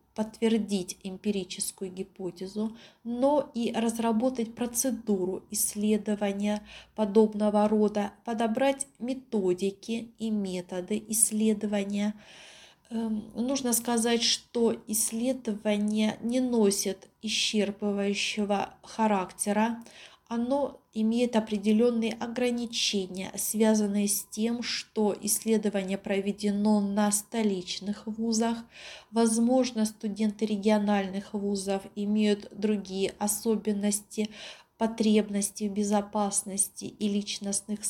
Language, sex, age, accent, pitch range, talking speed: Russian, female, 30-49, native, 205-230 Hz, 80 wpm